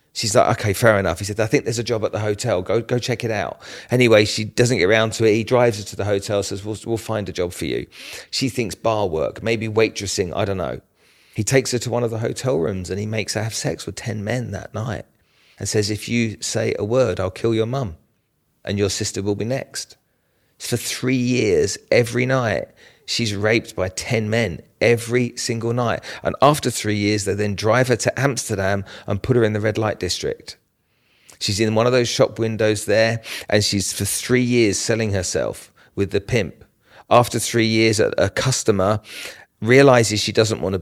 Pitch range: 100-115 Hz